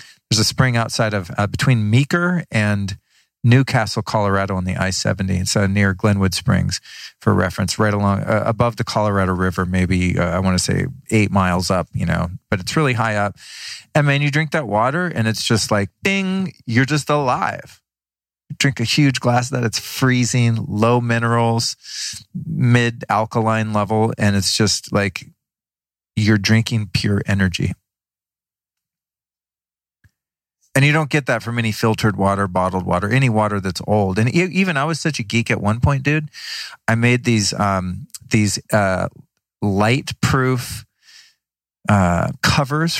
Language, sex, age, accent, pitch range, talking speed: English, male, 40-59, American, 100-125 Hz, 160 wpm